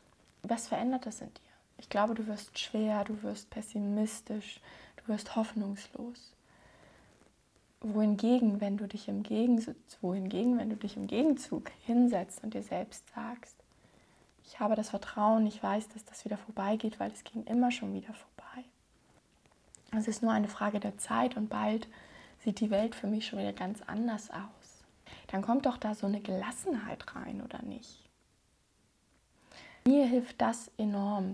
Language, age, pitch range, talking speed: German, 20-39, 205-235 Hz, 150 wpm